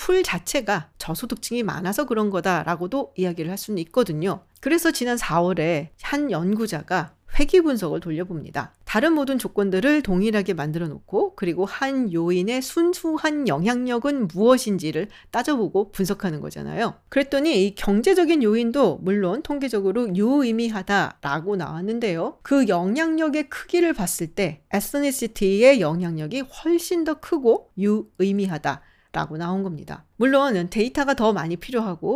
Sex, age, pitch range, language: female, 40-59, 185-270 Hz, Korean